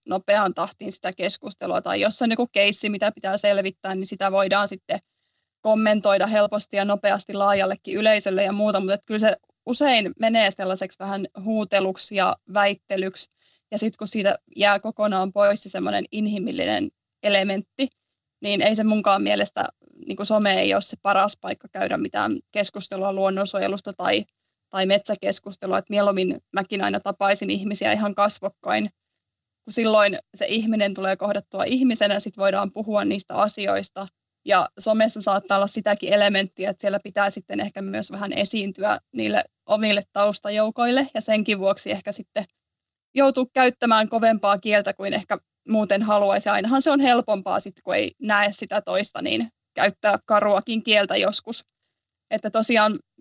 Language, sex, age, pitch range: Finnish, female, 20-39, 195-215 Hz